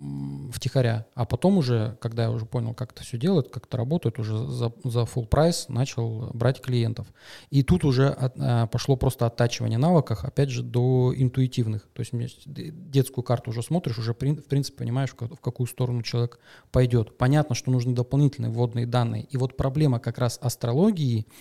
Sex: male